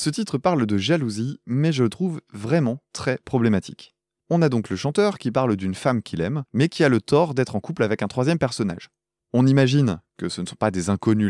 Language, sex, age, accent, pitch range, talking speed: French, male, 20-39, French, 105-155 Hz, 235 wpm